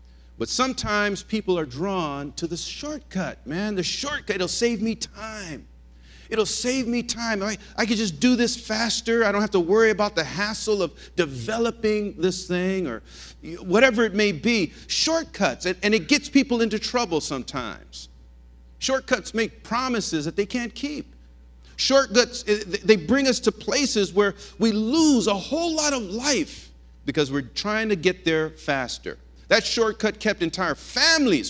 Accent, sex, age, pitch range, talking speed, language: American, male, 50-69, 150-230 Hz, 160 wpm, English